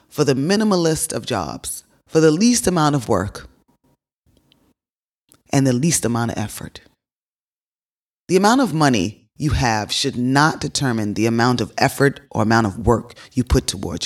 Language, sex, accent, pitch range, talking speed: English, female, American, 125-160 Hz, 160 wpm